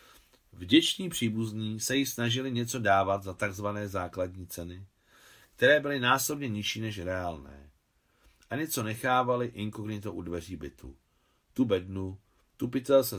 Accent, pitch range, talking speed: native, 85-120 Hz, 125 wpm